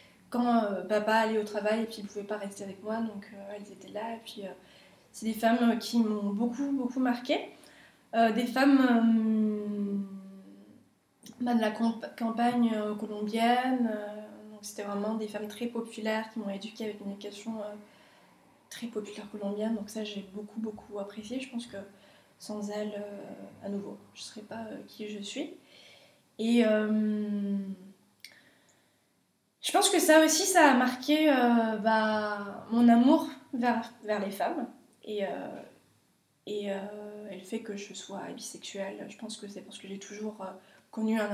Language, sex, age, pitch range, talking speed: French, female, 20-39, 205-235 Hz, 170 wpm